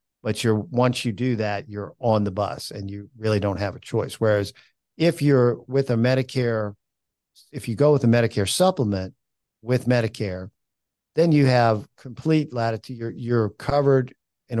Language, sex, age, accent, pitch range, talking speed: English, male, 50-69, American, 105-125 Hz, 170 wpm